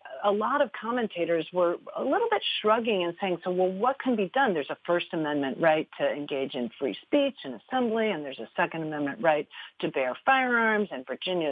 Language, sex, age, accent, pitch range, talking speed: English, female, 40-59, American, 150-205 Hz, 210 wpm